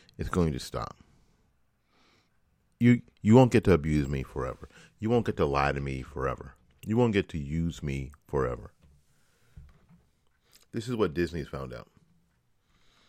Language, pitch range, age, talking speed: English, 75-95 Hz, 40-59, 150 wpm